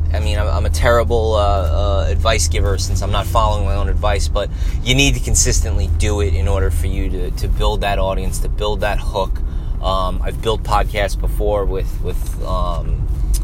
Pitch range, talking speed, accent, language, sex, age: 85-105 Hz, 195 wpm, American, English, male, 20-39